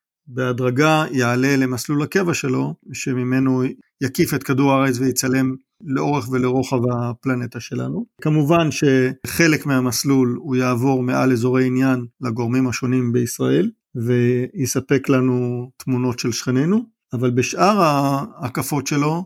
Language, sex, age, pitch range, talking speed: Hebrew, male, 50-69, 125-155 Hz, 110 wpm